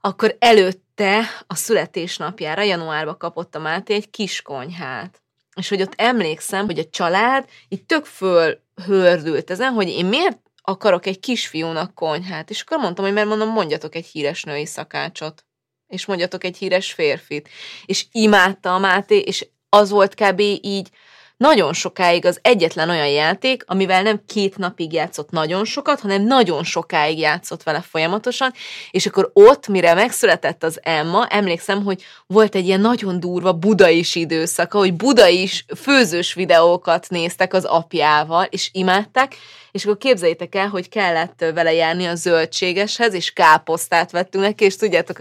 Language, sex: Hungarian, female